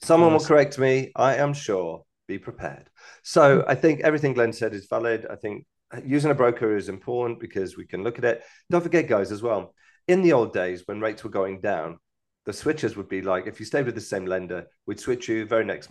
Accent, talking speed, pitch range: British, 230 wpm, 95-140 Hz